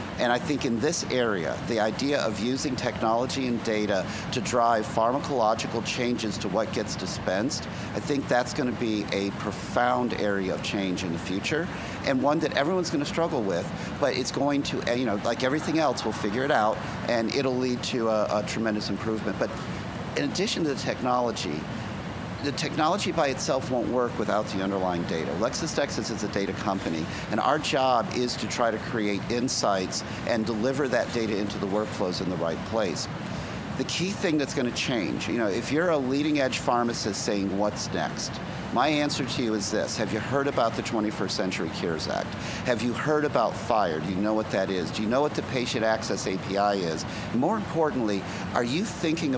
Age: 50-69